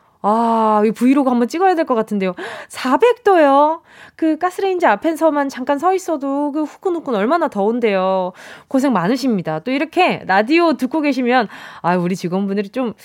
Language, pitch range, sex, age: Korean, 200-310 Hz, female, 20-39